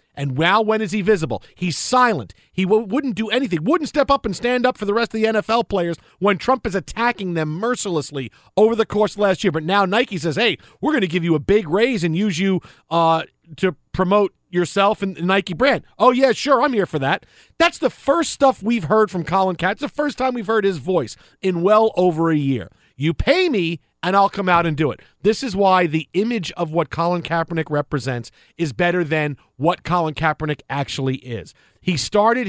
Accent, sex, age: American, male, 40-59